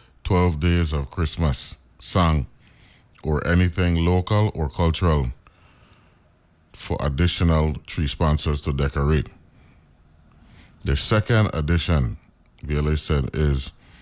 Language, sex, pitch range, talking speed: English, male, 75-90 Hz, 95 wpm